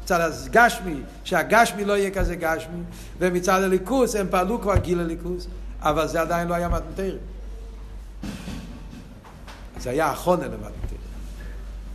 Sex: male